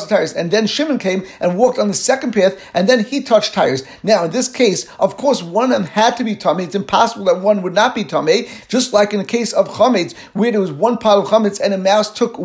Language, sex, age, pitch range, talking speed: English, male, 50-69, 195-235 Hz, 260 wpm